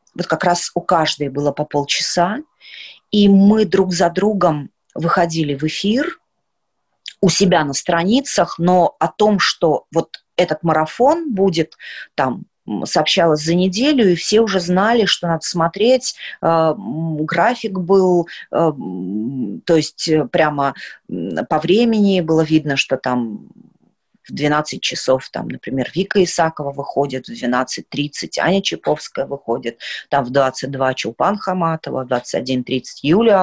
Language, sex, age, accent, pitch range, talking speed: Russian, female, 30-49, native, 150-195 Hz, 125 wpm